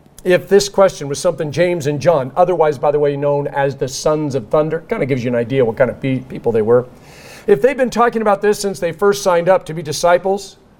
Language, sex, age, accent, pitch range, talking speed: English, male, 50-69, American, 145-195 Hz, 245 wpm